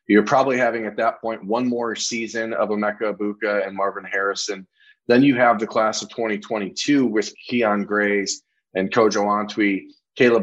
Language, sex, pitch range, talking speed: English, male, 100-125 Hz, 165 wpm